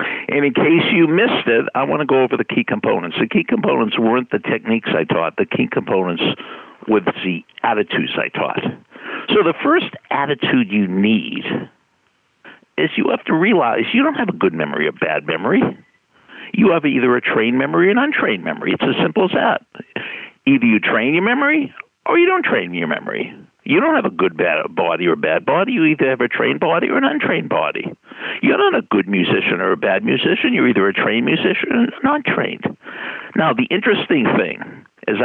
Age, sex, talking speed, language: 60-79, male, 205 wpm, English